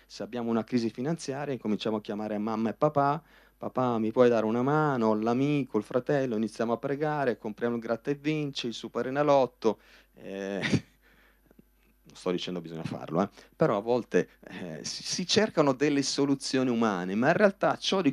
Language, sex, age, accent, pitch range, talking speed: Italian, male, 30-49, native, 105-145 Hz, 170 wpm